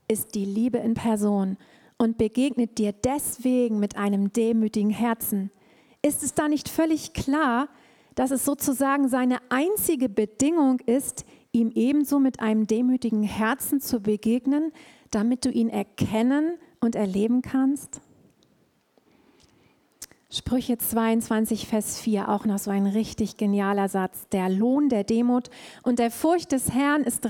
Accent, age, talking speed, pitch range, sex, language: German, 40-59, 135 wpm, 220-275 Hz, female, German